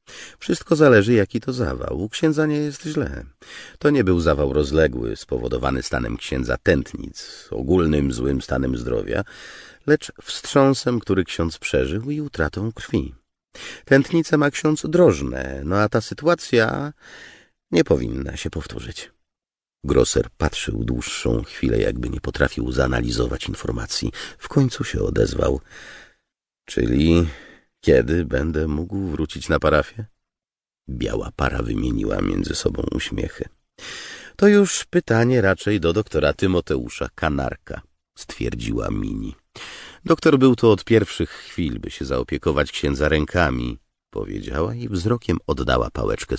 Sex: male